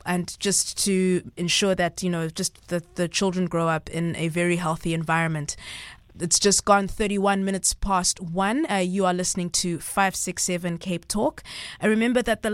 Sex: female